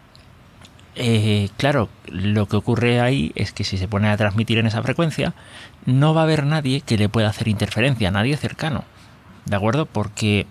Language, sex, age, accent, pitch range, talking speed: Spanish, male, 30-49, Spanish, 105-125 Hz, 170 wpm